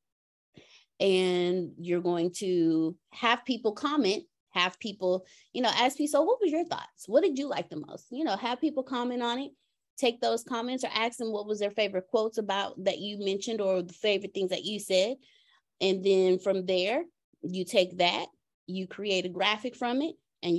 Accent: American